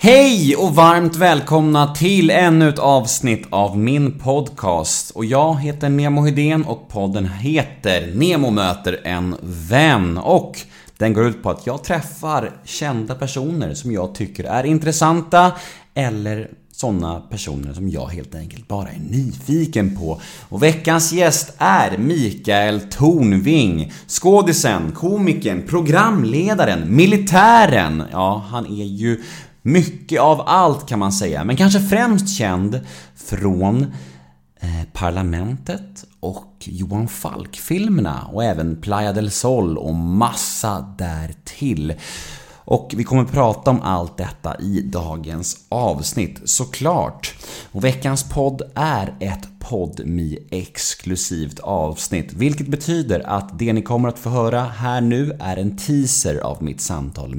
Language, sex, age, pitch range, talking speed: Swedish, male, 30-49, 95-150 Hz, 130 wpm